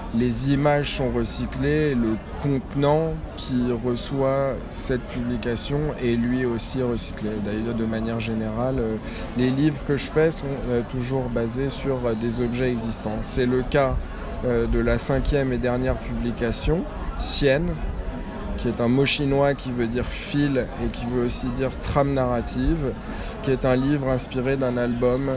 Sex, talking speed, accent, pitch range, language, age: male, 150 wpm, French, 120-140 Hz, French, 20-39